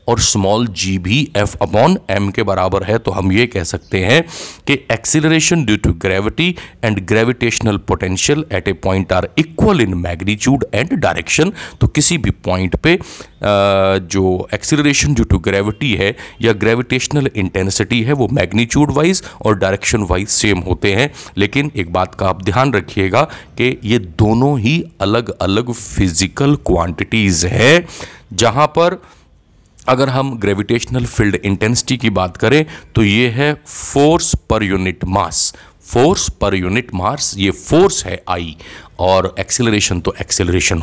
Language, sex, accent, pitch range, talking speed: Hindi, male, native, 95-125 Hz, 150 wpm